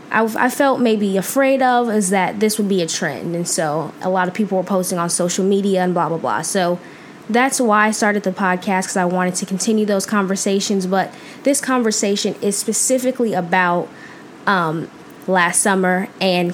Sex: female